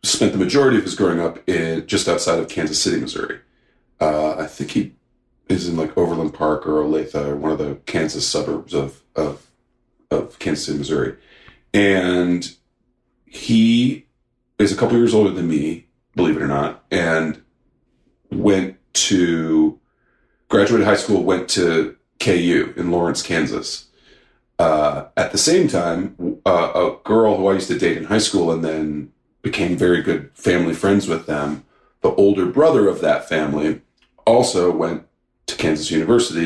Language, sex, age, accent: English, male, 40-59, American